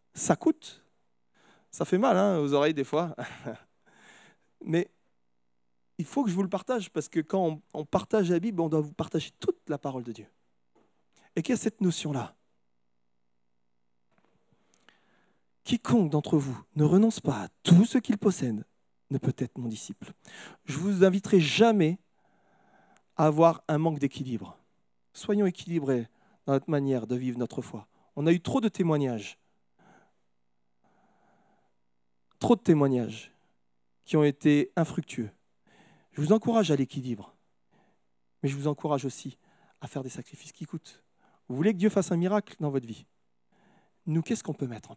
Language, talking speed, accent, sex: French, 160 wpm, French, male